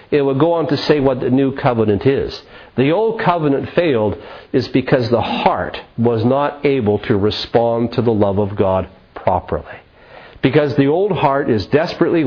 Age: 50-69